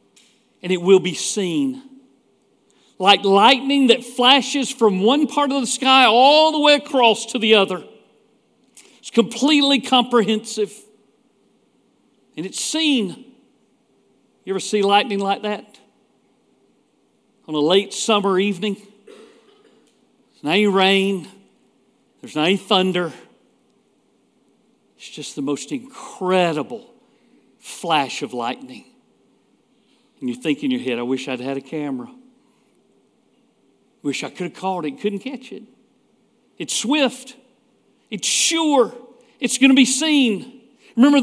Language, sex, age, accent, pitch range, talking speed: English, male, 50-69, American, 200-260 Hz, 125 wpm